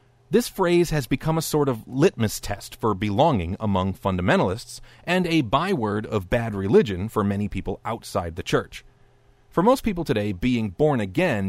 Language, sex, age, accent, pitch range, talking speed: English, male, 40-59, American, 105-150 Hz, 165 wpm